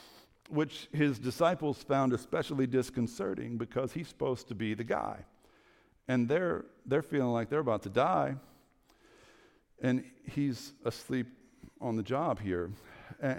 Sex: male